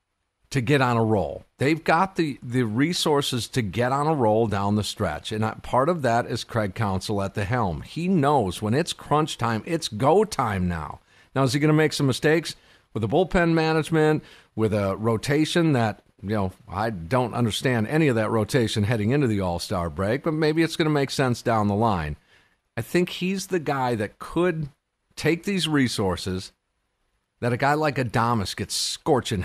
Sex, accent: male, American